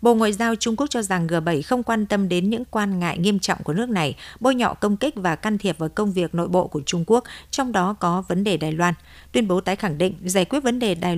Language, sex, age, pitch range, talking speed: Vietnamese, female, 60-79, 175-225 Hz, 280 wpm